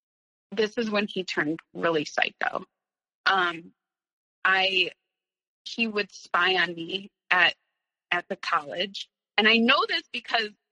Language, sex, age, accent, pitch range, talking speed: English, female, 20-39, American, 195-260 Hz, 130 wpm